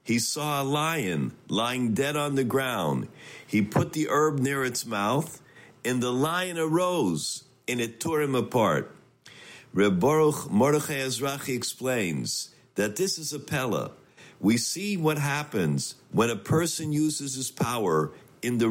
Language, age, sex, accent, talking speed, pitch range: English, 50-69, male, American, 150 wpm, 125-155 Hz